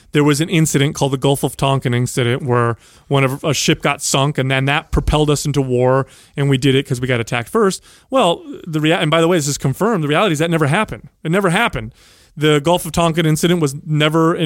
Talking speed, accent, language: 245 wpm, American, English